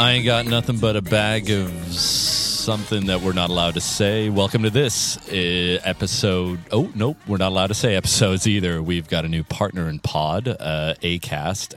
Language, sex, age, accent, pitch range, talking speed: English, male, 30-49, American, 90-120 Hz, 190 wpm